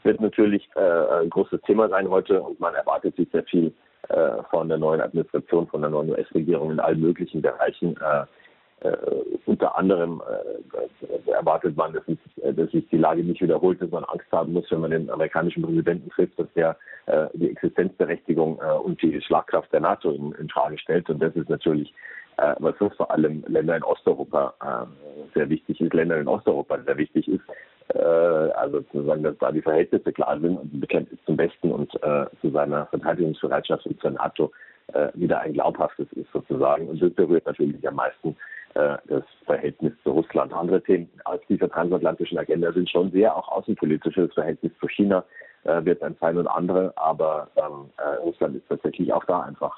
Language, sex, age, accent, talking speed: German, male, 40-59, German, 190 wpm